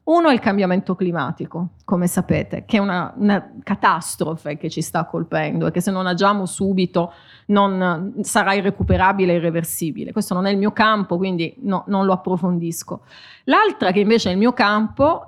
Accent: native